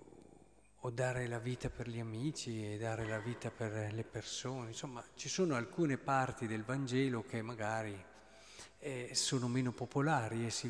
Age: 40-59